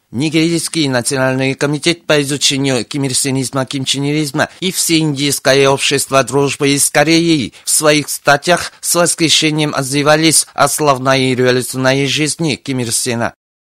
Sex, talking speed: male, 110 wpm